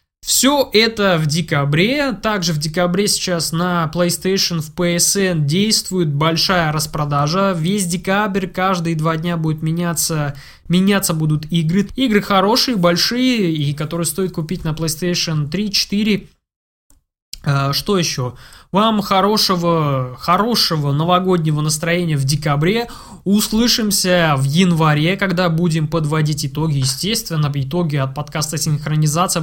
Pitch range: 150-190 Hz